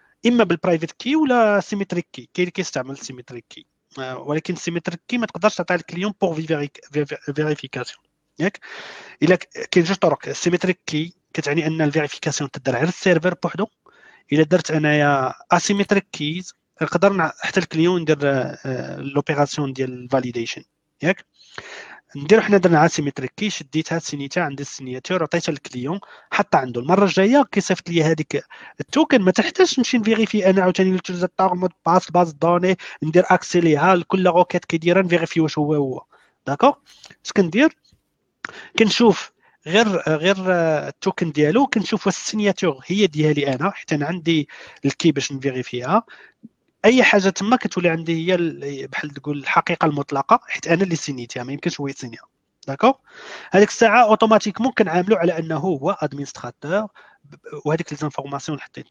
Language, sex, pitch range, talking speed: Arabic, male, 150-195 Hz, 140 wpm